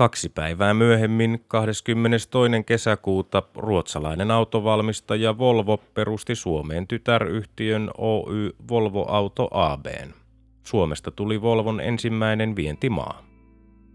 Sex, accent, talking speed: male, native, 85 wpm